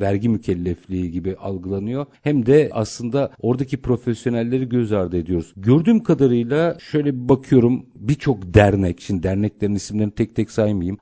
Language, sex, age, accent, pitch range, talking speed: Turkish, male, 50-69, native, 100-125 Hz, 135 wpm